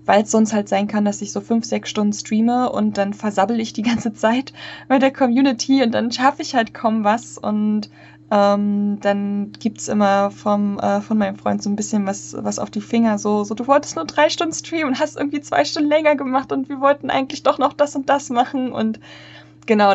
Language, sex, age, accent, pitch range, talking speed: German, female, 20-39, German, 200-235 Hz, 230 wpm